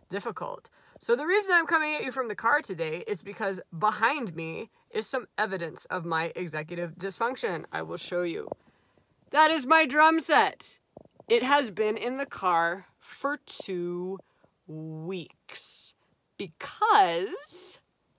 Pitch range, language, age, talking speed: 180-255 Hz, English, 30-49, 140 wpm